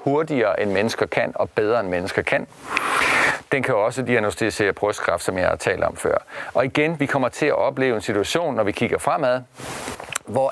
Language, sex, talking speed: Danish, male, 195 wpm